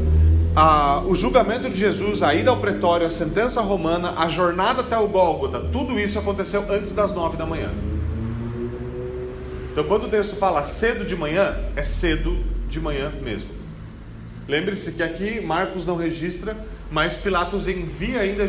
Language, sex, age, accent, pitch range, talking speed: Portuguese, male, 40-59, Brazilian, 135-190 Hz, 155 wpm